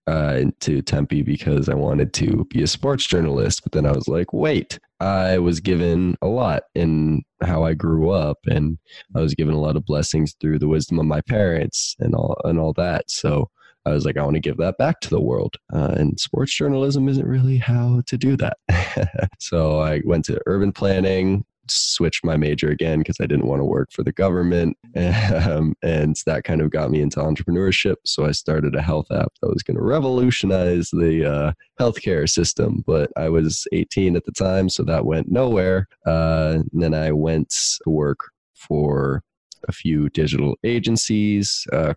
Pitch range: 75-95 Hz